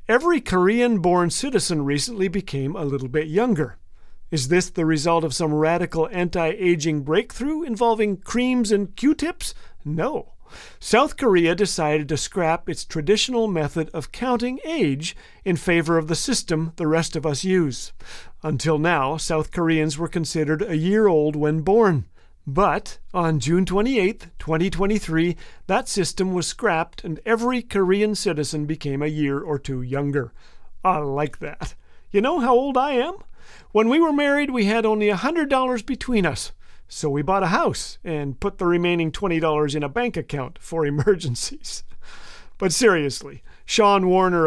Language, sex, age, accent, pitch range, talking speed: English, male, 40-59, American, 155-210 Hz, 150 wpm